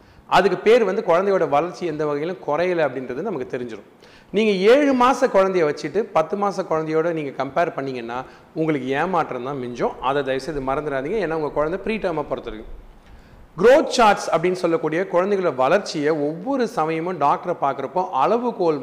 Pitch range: 140-195 Hz